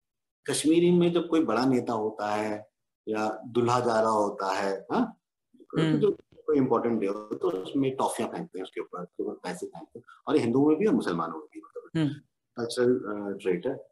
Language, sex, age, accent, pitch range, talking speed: Hindi, male, 50-69, native, 125-205 Hz, 140 wpm